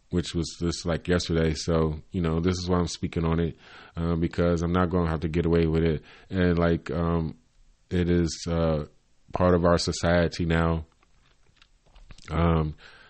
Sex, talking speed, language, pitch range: male, 180 wpm, English, 80-95 Hz